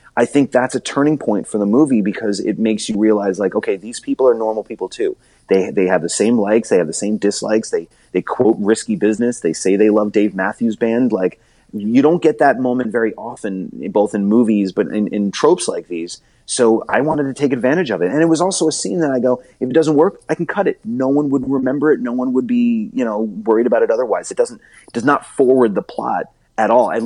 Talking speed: 250 wpm